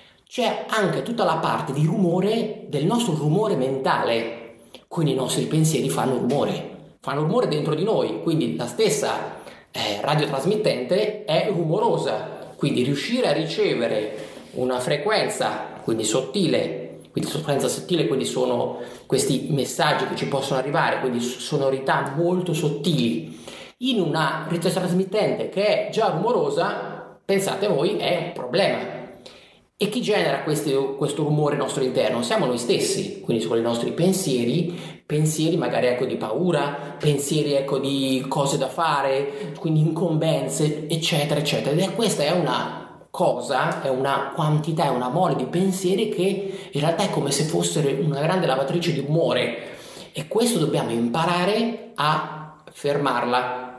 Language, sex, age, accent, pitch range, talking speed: Italian, male, 30-49, native, 135-185 Hz, 140 wpm